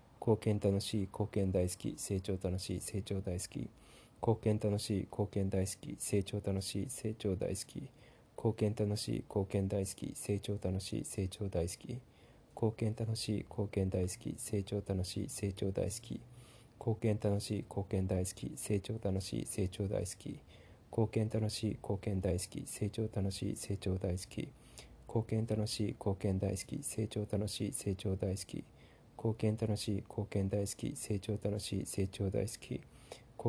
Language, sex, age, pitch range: Japanese, male, 20-39, 100-110 Hz